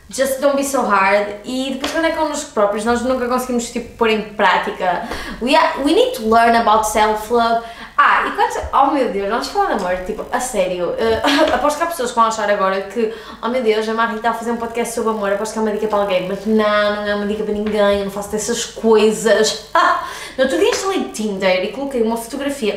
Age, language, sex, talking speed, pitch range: 20-39, Portuguese, female, 245 wpm, 205-260 Hz